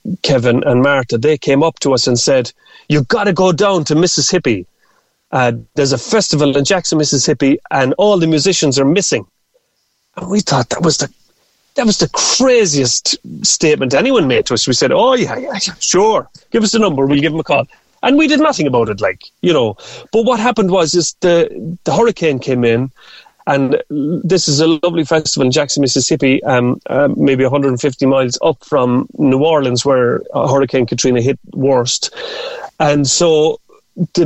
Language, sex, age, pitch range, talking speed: English, male, 30-49, 135-190 Hz, 185 wpm